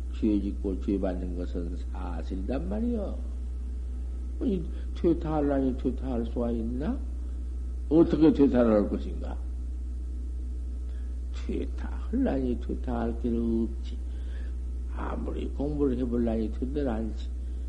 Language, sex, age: Korean, male, 60-79